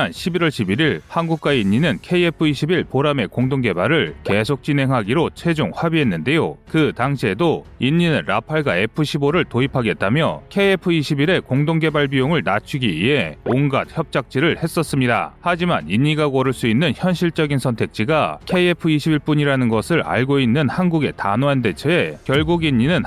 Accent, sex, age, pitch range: native, male, 30-49, 130-170 Hz